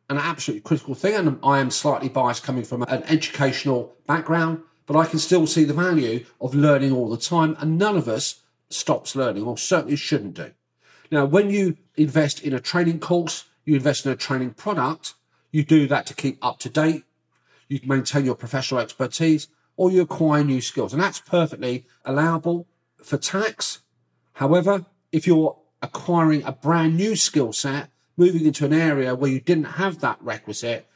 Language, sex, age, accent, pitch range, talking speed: English, male, 40-59, British, 130-165 Hz, 180 wpm